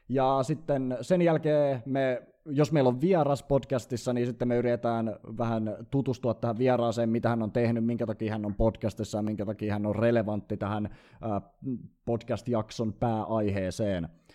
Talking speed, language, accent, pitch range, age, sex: 150 wpm, Finnish, native, 115-140 Hz, 20-39, male